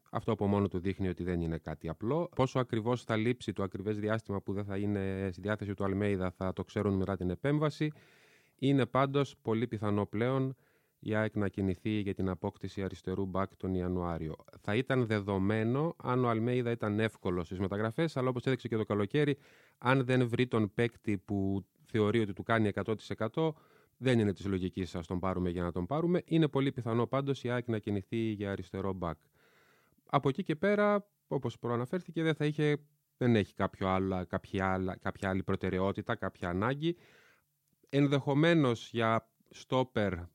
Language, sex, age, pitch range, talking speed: Greek, male, 30-49, 100-130 Hz, 175 wpm